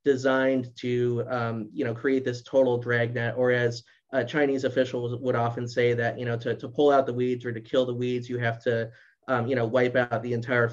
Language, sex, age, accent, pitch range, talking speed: English, male, 30-49, American, 120-135 Hz, 230 wpm